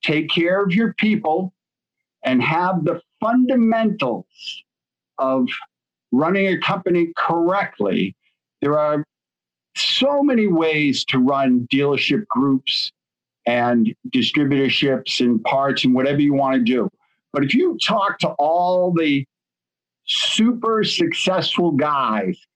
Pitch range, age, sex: 145-200 Hz, 50-69, male